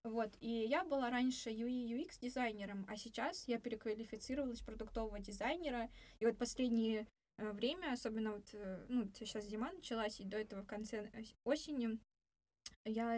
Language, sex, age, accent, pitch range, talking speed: Russian, female, 20-39, native, 220-250 Hz, 130 wpm